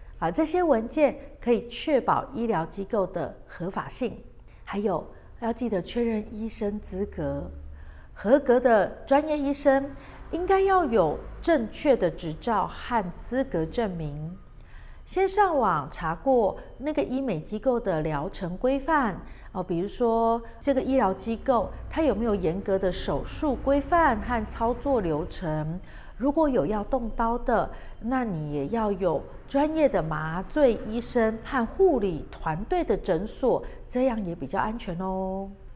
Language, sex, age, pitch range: Chinese, female, 40-59, 190-270 Hz